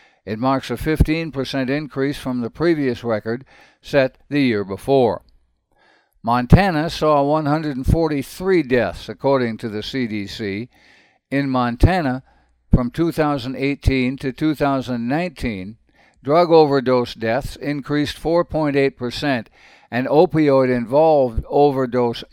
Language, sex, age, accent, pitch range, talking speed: English, male, 60-79, American, 120-150 Hz, 95 wpm